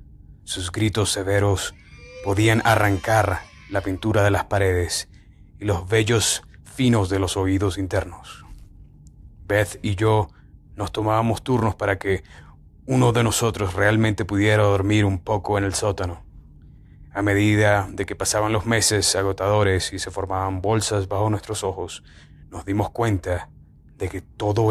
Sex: male